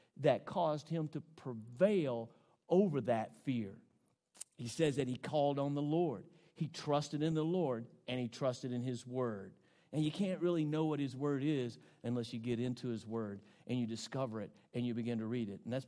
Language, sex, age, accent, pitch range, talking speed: English, male, 50-69, American, 130-165 Hz, 205 wpm